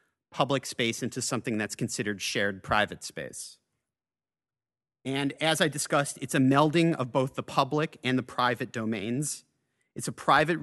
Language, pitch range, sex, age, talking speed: English, 125-155 Hz, male, 30-49, 150 wpm